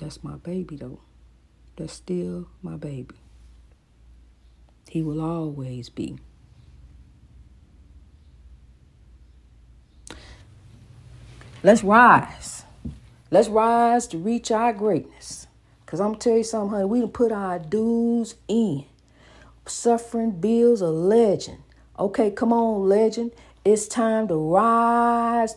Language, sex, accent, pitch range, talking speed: English, female, American, 155-225 Hz, 105 wpm